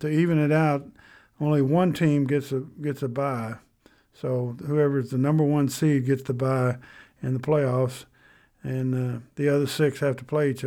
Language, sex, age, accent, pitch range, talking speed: English, male, 50-69, American, 125-150 Hz, 185 wpm